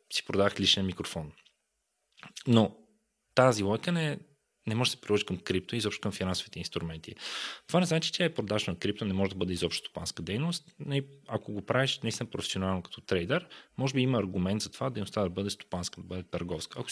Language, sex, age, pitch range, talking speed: Bulgarian, male, 20-39, 95-140 Hz, 200 wpm